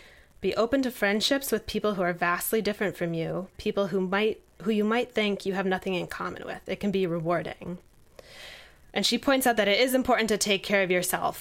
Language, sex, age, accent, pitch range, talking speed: English, female, 20-39, American, 165-210 Hz, 220 wpm